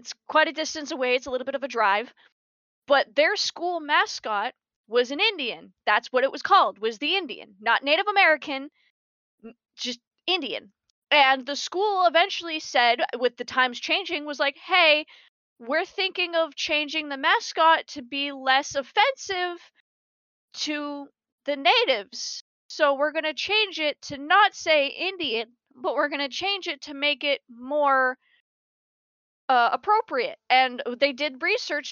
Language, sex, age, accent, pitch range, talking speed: English, female, 20-39, American, 260-335 Hz, 155 wpm